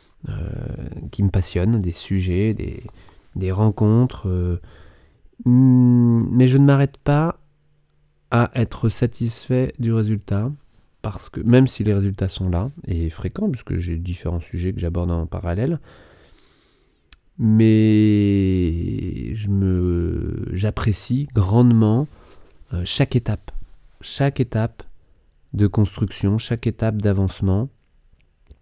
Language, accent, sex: French, French, male